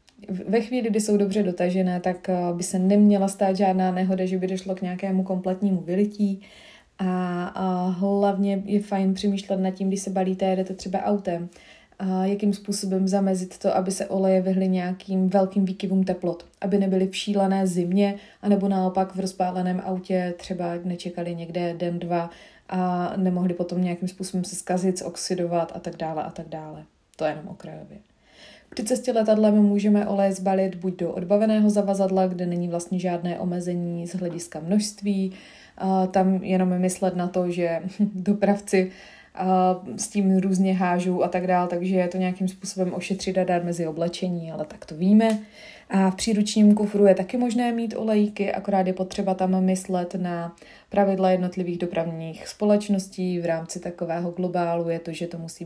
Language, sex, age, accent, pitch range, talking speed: Czech, female, 30-49, native, 180-195 Hz, 165 wpm